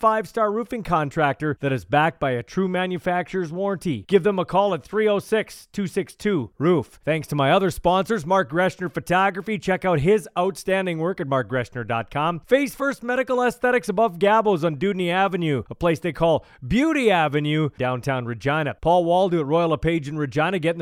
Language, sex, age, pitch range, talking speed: English, male, 30-49, 160-215 Hz, 165 wpm